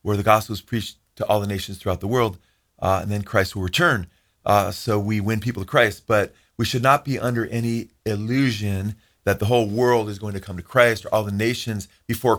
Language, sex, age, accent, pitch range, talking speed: English, male, 40-59, American, 95-120 Hz, 230 wpm